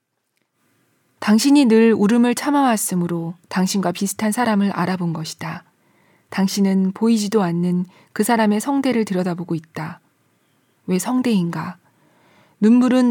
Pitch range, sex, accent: 180-225 Hz, female, native